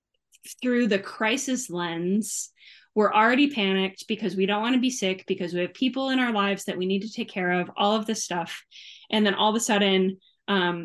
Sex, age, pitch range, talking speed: female, 20-39, 185-215 Hz, 215 wpm